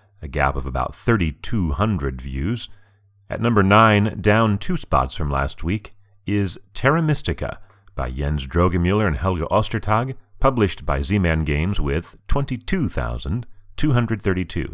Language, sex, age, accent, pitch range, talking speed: English, male, 40-59, American, 80-105 Hz, 120 wpm